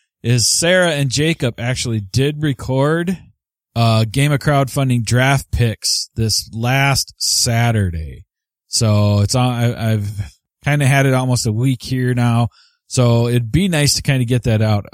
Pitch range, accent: 105-125 Hz, American